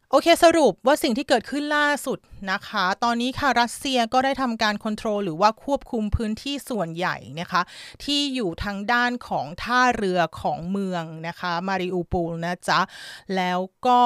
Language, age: Thai, 30-49